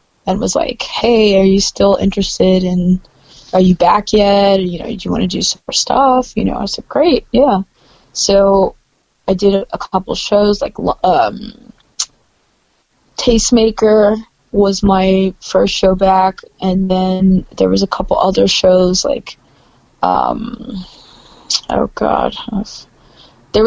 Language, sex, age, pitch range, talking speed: English, female, 20-39, 185-220 Hz, 145 wpm